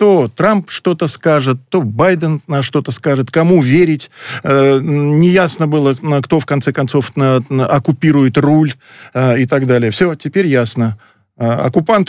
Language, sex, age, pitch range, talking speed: Russian, male, 40-59, 125-165 Hz, 130 wpm